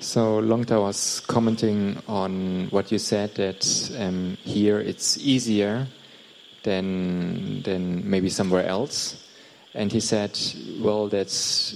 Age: 20-39